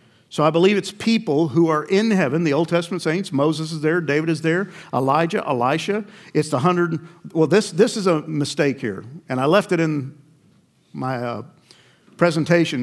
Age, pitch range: 50-69, 135-180 Hz